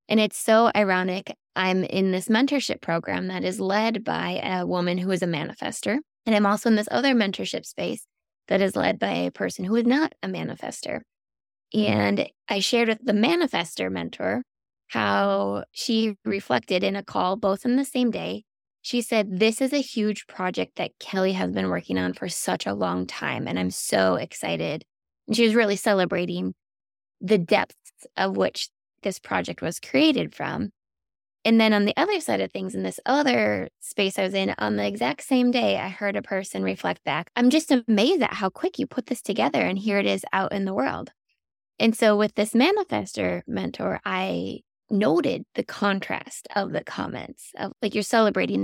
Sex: female